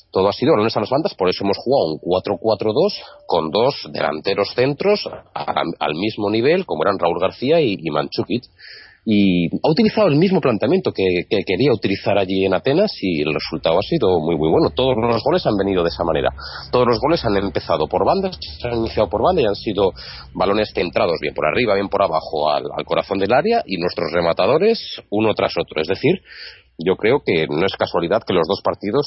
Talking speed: 205 wpm